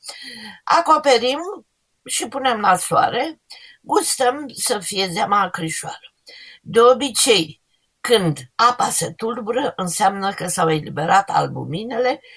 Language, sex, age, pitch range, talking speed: Romanian, female, 50-69, 165-255 Hz, 100 wpm